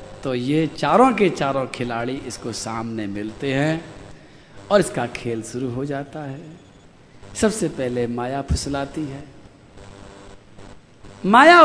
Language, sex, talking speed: Hindi, male, 120 wpm